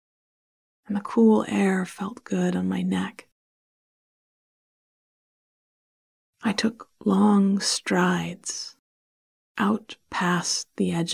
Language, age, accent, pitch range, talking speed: English, 30-49, American, 175-205 Hz, 90 wpm